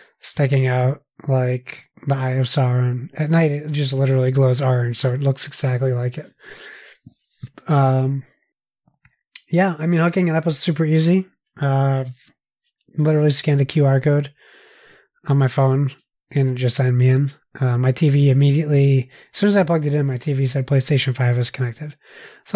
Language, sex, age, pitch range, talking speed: English, male, 20-39, 135-160 Hz, 170 wpm